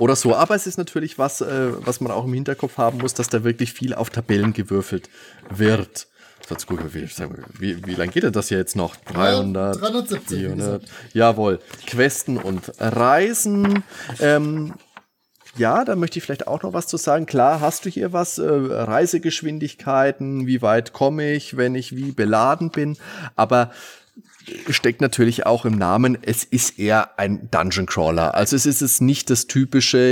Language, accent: German, German